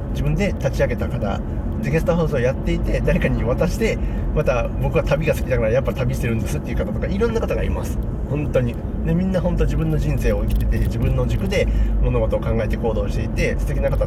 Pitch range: 80-110 Hz